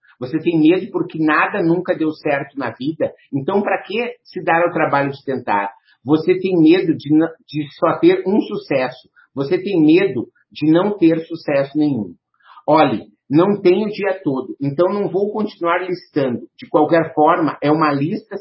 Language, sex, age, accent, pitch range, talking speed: Portuguese, male, 50-69, Brazilian, 140-180 Hz, 170 wpm